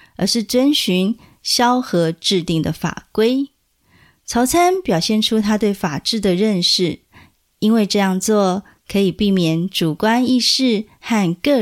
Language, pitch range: Chinese, 180-235 Hz